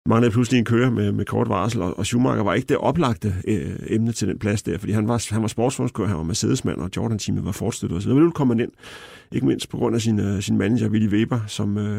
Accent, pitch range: native, 100-115 Hz